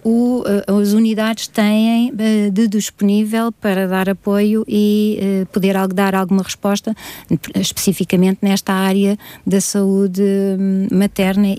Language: Portuguese